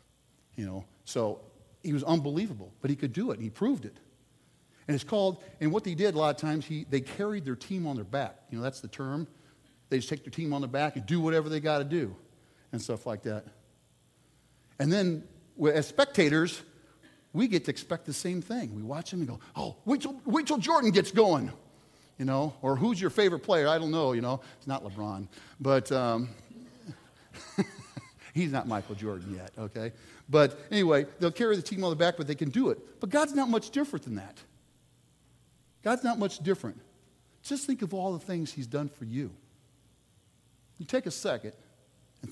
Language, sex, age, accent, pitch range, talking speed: English, male, 40-59, American, 120-170 Hz, 205 wpm